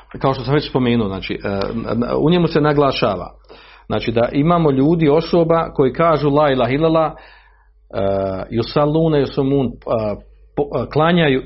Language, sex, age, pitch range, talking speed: Croatian, male, 50-69, 120-190 Hz, 135 wpm